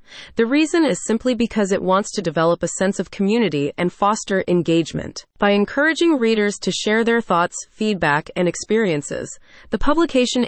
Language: English